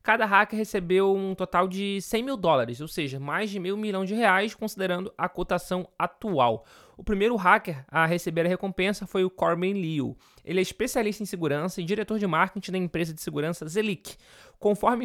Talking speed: 185 wpm